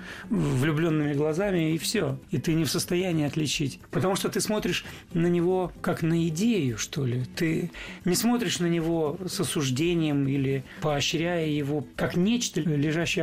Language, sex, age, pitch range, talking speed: Russian, male, 40-59, 140-175 Hz, 155 wpm